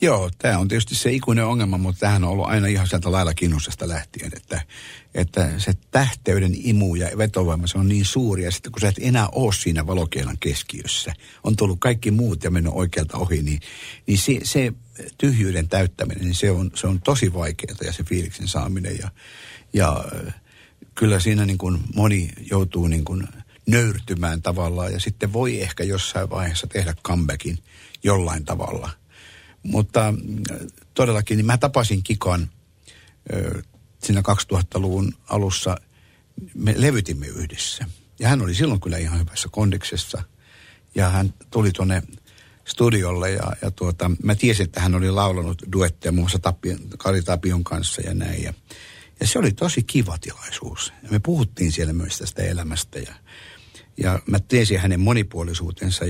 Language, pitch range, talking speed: Finnish, 90-110 Hz, 155 wpm